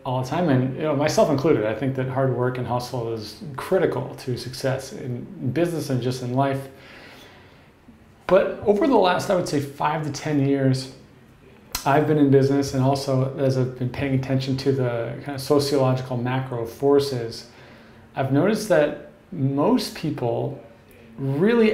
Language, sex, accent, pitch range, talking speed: English, male, American, 130-145 Hz, 165 wpm